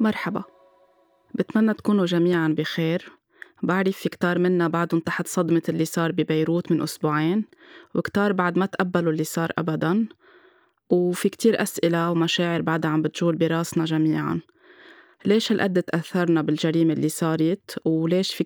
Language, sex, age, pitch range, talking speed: Arabic, female, 20-39, 165-190 Hz, 135 wpm